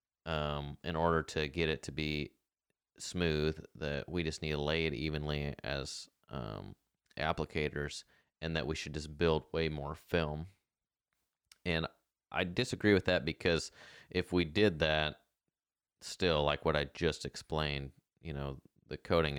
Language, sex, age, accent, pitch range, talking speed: English, male, 30-49, American, 75-85 Hz, 150 wpm